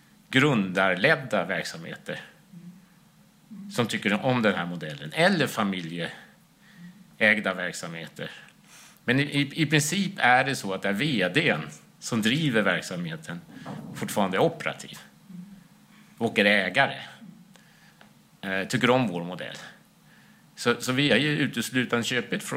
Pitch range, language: 105-170 Hz, Swedish